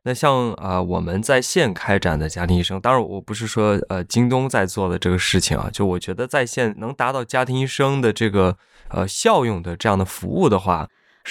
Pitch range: 95-115 Hz